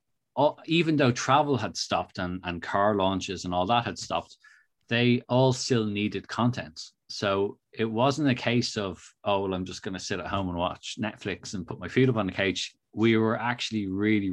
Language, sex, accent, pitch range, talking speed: English, male, Irish, 95-120 Hz, 210 wpm